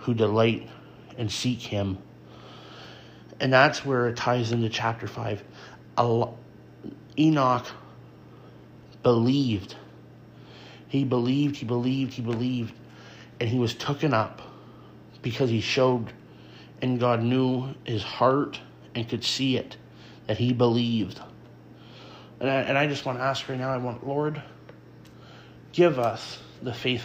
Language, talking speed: English, 130 wpm